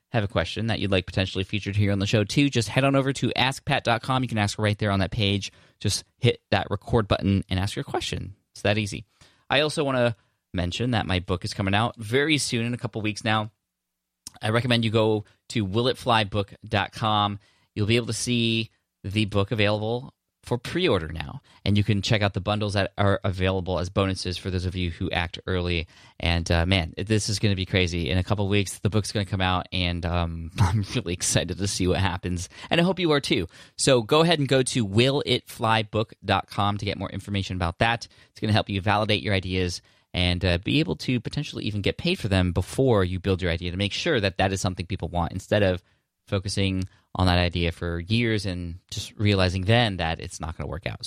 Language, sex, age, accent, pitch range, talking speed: English, male, 20-39, American, 95-115 Hz, 225 wpm